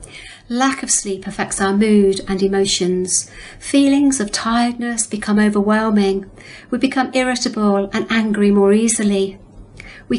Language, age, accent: English, 50-69, British